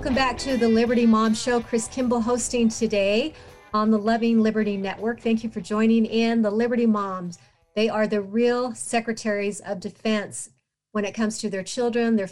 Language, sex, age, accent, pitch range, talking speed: English, female, 40-59, American, 200-230 Hz, 185 wpm